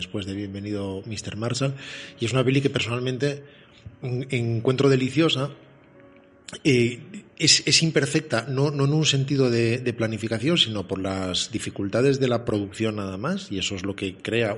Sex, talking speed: male, 170 wpm